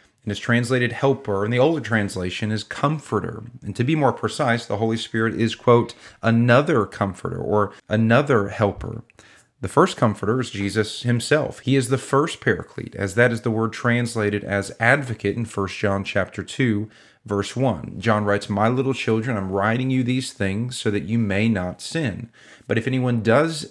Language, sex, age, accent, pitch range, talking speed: English, male, 40-59, American, 105-130 Hz, 175 wpm